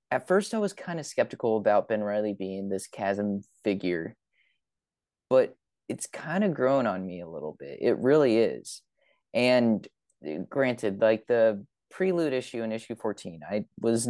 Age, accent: 20-39, American